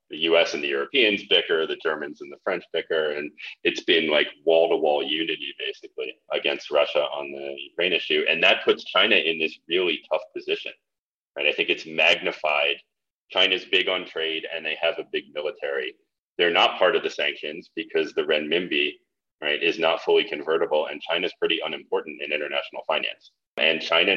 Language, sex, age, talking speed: English, male, 30-49, 180 wpm